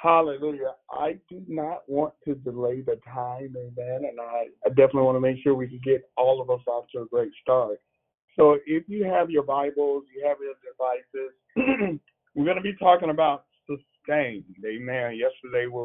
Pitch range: 130-155 Hz